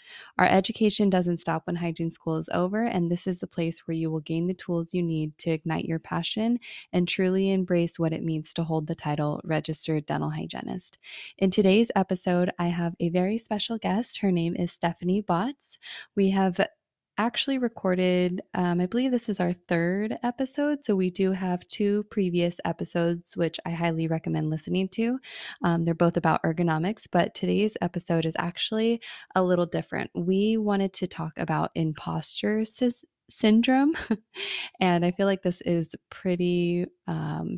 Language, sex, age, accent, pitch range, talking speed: English, female, 20-39, American, 165-200 Hz, 170 wpm